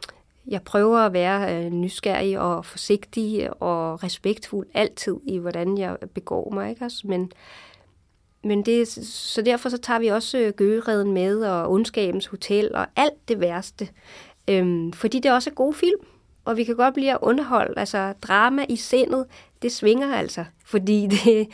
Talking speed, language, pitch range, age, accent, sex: 165 wpm, Danish, 180-225 Hz, 30-49, native, female